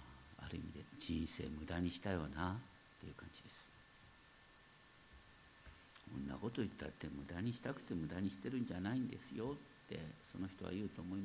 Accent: native